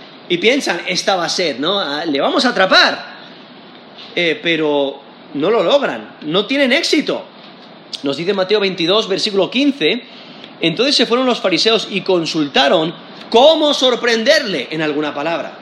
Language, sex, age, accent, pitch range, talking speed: Spanish, male, 30-49, Spanish, 165-235 Hz, 145 wpm